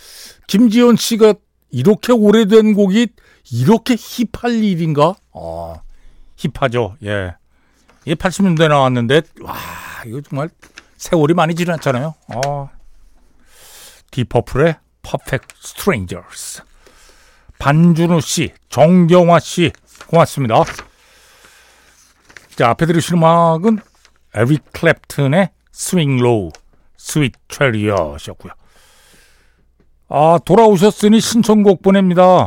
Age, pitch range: 60-79, 110-180 Hz